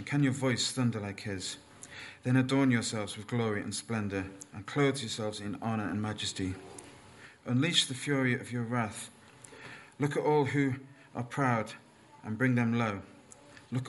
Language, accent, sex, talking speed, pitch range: English, British, male, 160 wpm, 110-135 Hz